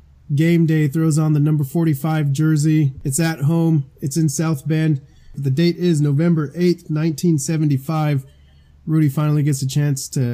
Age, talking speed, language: 20-39, 155 wpm, English